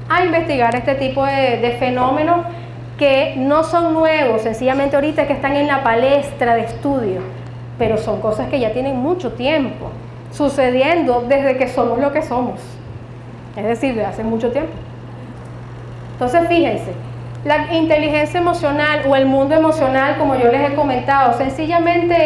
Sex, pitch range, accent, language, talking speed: female, 230-305 Hz, American, Spanish, 150 wpm